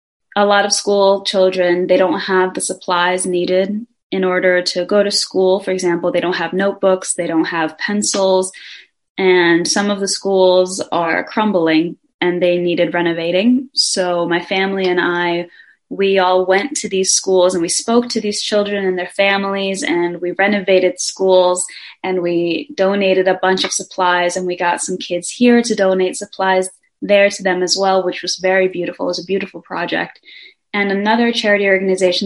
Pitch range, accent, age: 180-200 Hz, American, 20-39